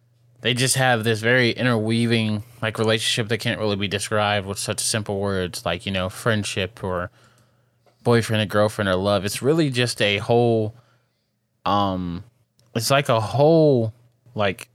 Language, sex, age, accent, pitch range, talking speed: English, male, 20-39, American, 105-120 Hz, 155 wpm